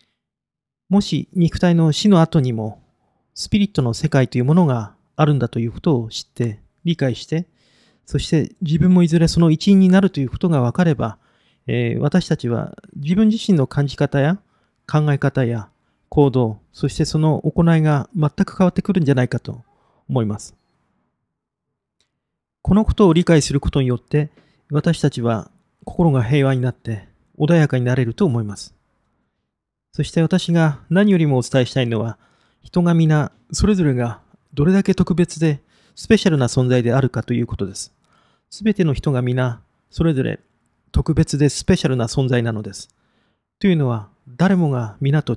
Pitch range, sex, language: 120-170 Hz, male, Japanese